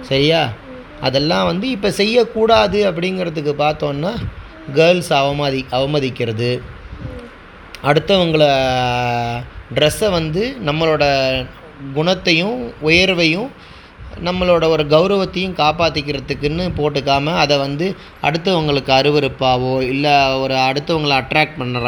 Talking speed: 80 wpm